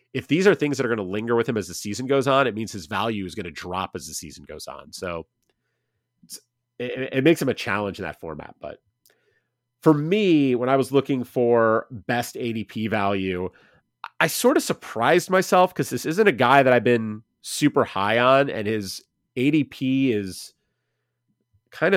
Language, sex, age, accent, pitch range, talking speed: English, male, 30-49, American, 110-135 Hz, 195 wpm